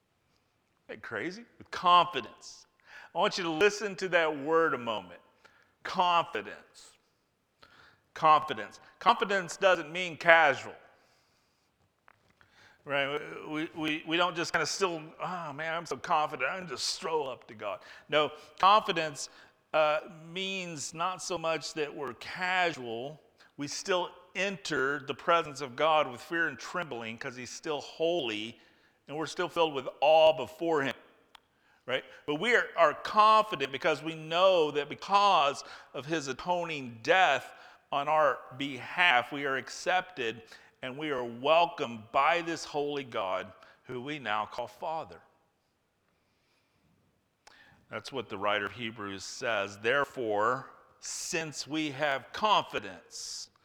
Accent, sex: American, male